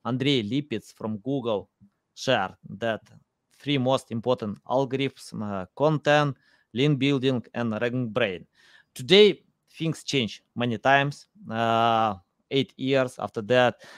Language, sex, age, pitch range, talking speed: English, male, 20-39, 115-150 Hz, 115 wpm